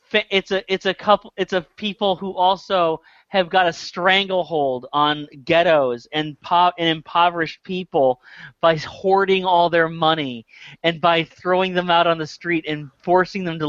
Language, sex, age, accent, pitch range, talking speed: English, male, 30-49, American, 150-190 Hz, 165 wpm